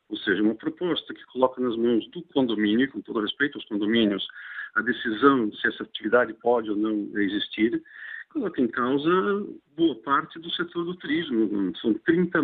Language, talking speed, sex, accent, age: Portuguese, 180 wpm, male, Brazilian, 50-69